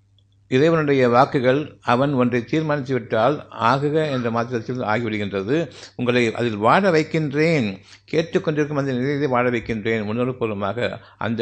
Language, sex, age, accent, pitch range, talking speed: Tamil, male, 60-79, native, 100-150 Hz, 110 wpm